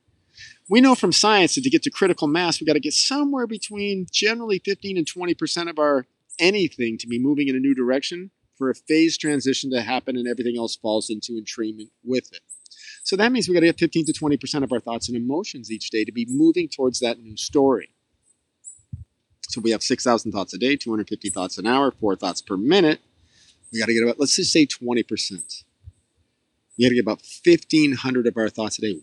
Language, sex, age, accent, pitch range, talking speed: English, male, 40-59, American, 115-165 Hz, 215 wpm